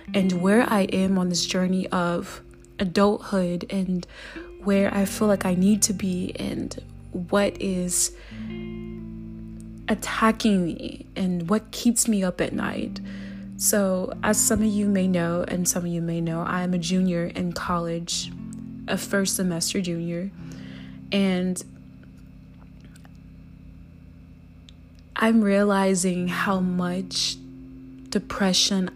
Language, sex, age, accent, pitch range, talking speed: English, female, 20-39, American, 170-200 Hz, 120 wpm